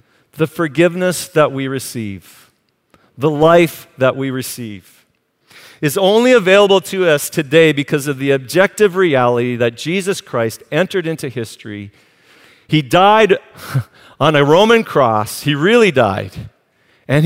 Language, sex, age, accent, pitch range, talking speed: English, male, 40-59, American, 135-195 Hz, 130 wpm